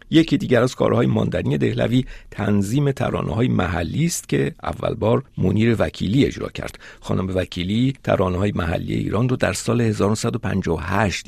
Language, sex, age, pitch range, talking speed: Persian, male, 50-69, 90-115 Hz, 150 wpm